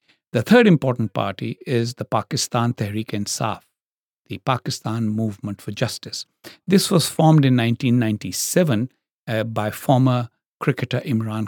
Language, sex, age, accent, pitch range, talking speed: English, male, 60-79, Indian, 110-135 Hz, 125 wpm